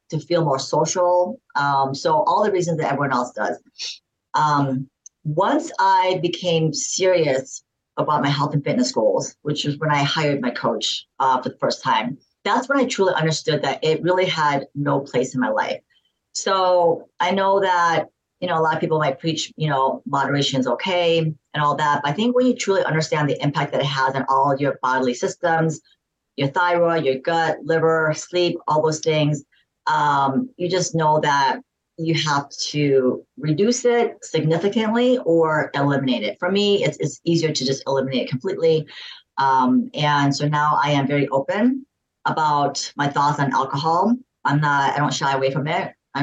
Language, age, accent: English, 40-59, American